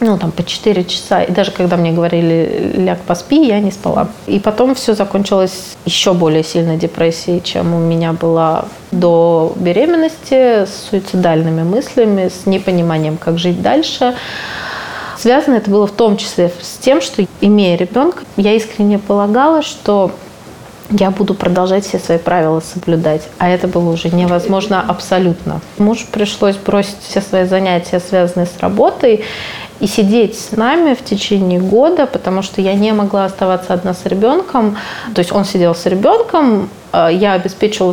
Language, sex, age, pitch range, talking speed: Russian, female, 30-49, 175-215 Hz, 155 wpm